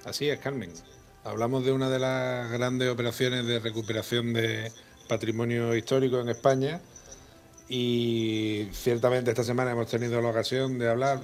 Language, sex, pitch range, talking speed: Spanish, male, 115-125 Hz, 145 wpm